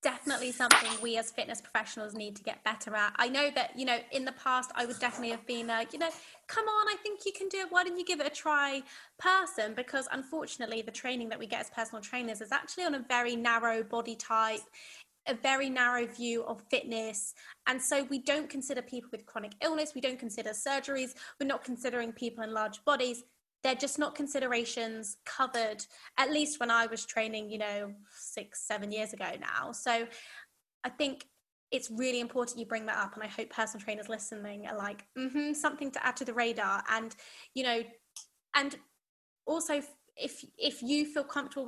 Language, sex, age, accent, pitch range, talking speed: English, female, 20-39, British, 225-275 Hz, 200 wpm